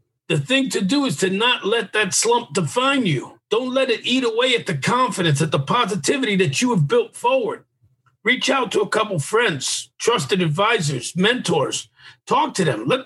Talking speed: 190 wpm